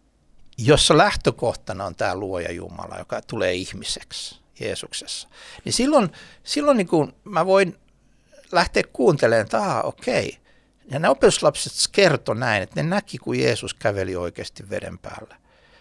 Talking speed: 135 wpm